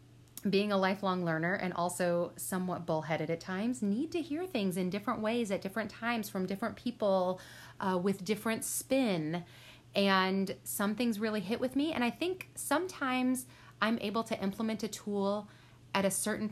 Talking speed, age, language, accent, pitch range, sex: 170 wpm, 30-49, English, American, 170-225 Hz, female